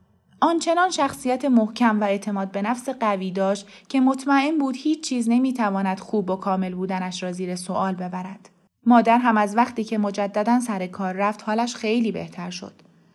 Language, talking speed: Persian, 165 wpm